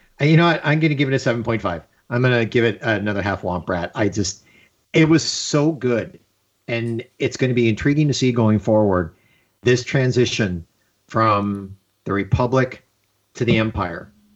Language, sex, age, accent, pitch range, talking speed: English, male, 50-69, American, 105-125 Hz, 175 wpm